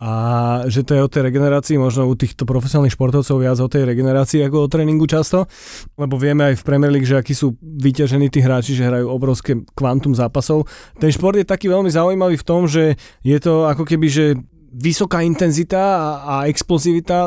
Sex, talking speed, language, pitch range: male, 190 wpm, Slovak, 135-165 Hz